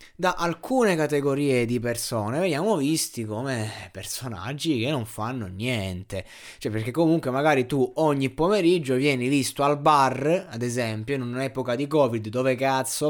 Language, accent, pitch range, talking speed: Italian, native, 120-170 Hz, 145 wpm